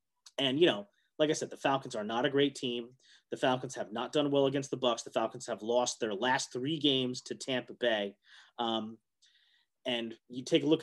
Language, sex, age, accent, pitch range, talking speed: English, male, 30-49, American, 125-165 Hz, 215 wpm